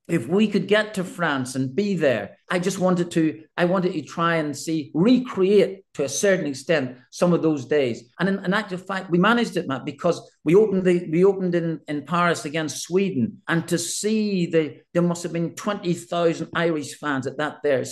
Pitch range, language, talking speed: 135-175 Hz, English, 205 wpm